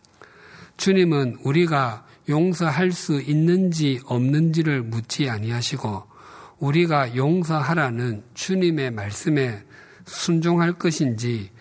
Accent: native